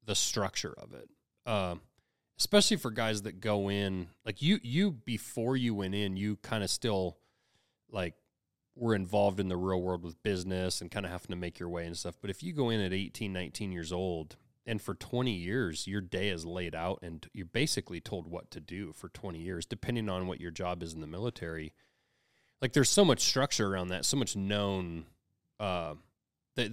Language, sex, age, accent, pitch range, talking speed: English, male, 30-49, American, 90-115 Hz, 205 wpm